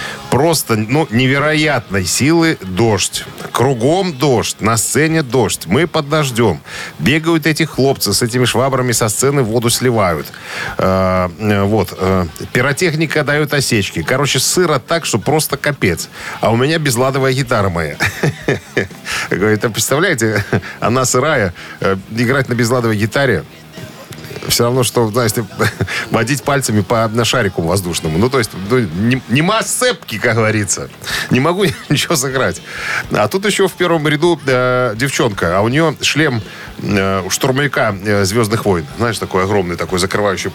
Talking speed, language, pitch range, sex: 135 wpm, Russian, 105-145 Hz, male